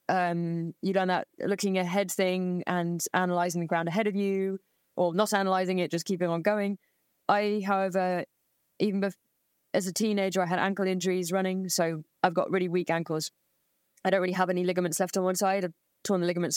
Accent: British